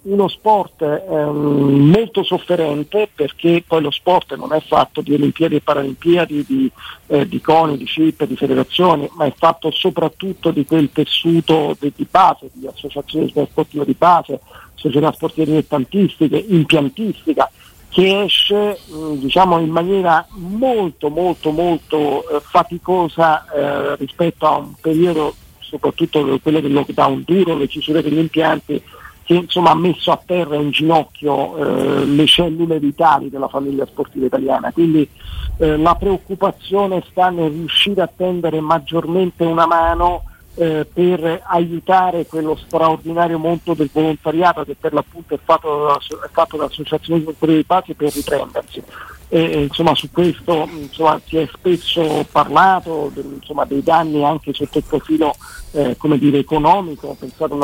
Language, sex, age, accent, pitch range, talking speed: Italian, male, 50-69, native, 145-170 Hz, 140 wpm